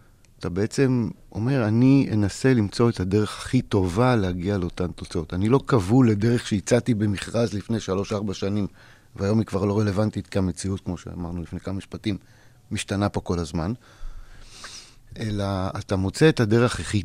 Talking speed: 155 wpm